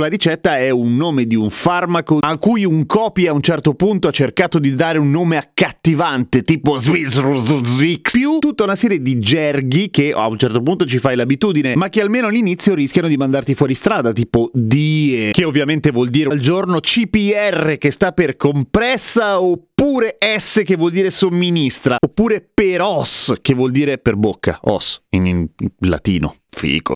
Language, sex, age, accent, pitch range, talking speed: Italian, male, 30-49, native, 140-195 Hz, 185 wpm